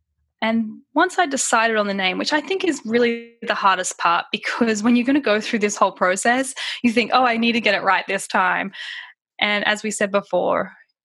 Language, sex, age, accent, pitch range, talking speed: English, female, 10-29, Australian, 195-245 Hz, 225 wpm